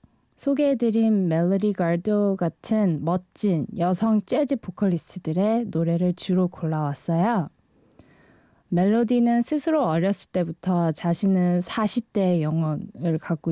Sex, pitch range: female, 170-215 Hz